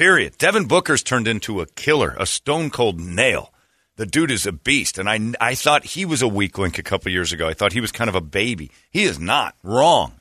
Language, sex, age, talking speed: English, male, 40-59, 235 wpm